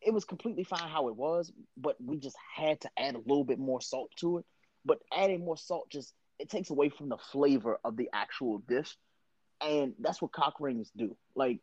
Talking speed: 215 wpm